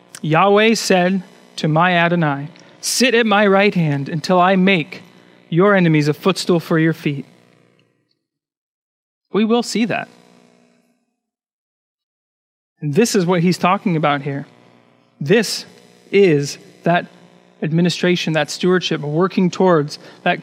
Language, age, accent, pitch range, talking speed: English, 40-59, American, 150-195 Hz, 120 wpm